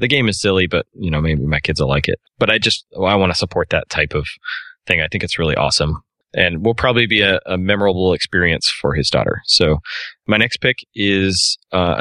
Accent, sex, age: American, male, 20-39